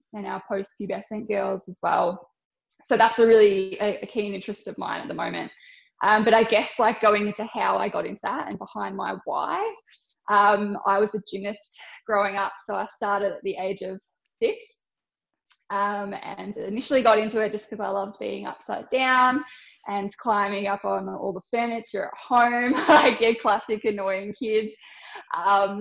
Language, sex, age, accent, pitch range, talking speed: English, female, 10-29, Australian, 200-230 Hz, 180 wpm